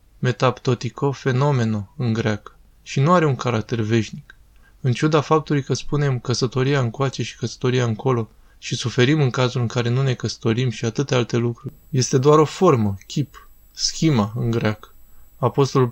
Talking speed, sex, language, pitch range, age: 160 wpm, male, Romanian, 120-140 Hz, 20-39